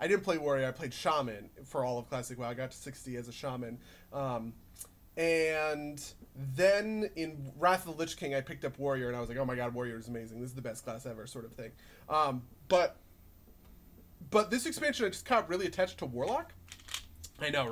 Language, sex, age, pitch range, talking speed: English, male, 30-49, 120-175 Hz, 220 wpm